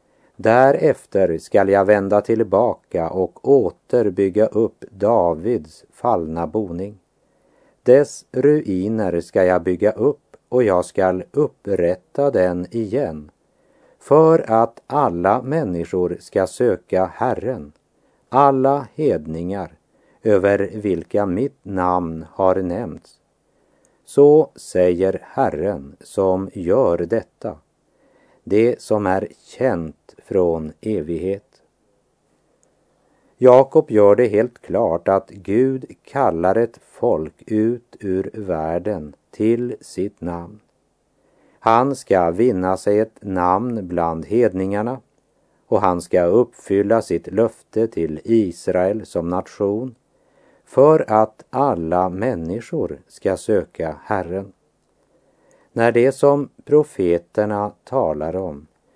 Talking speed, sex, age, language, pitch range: 100 wpm, male, 50-69, German, 90-115 Hz